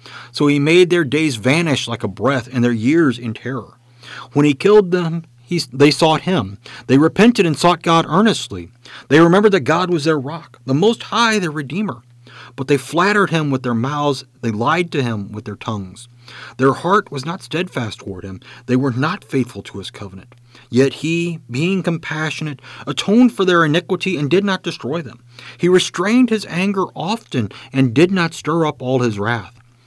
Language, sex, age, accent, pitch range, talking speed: English, male, 40-59, American, 120-165 Hz, 190 wpm